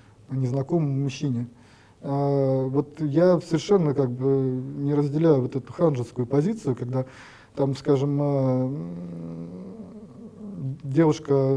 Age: 20-39